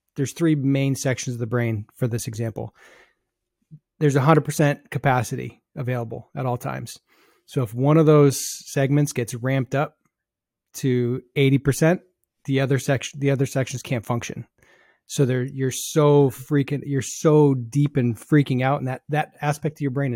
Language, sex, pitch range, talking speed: English, male, 125-145 Hz, 165 wpm